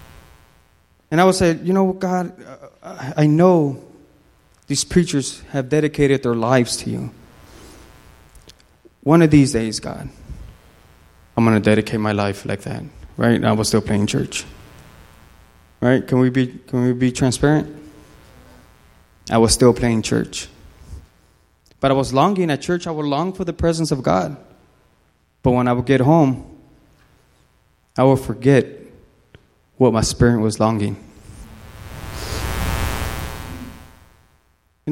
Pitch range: 90-150 Hz